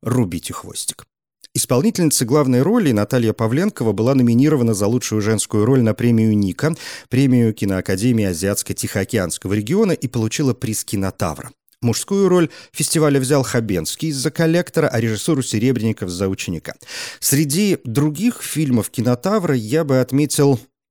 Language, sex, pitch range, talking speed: Russian, male, 105-140 Hz, 125 wpm